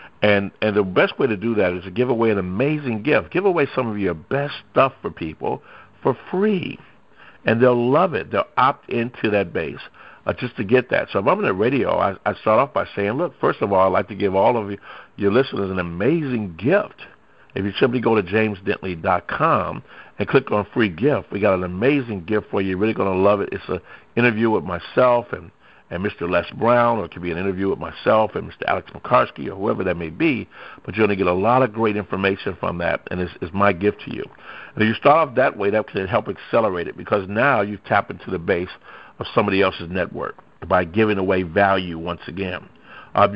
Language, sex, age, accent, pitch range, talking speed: English, male, 60-79, American, 95-120 Hz, 235 wpm